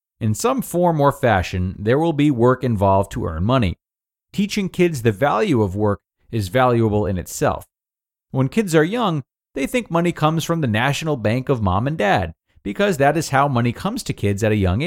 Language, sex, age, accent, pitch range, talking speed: English, male, 40-59, American, 100-150 Hz, 200 wpm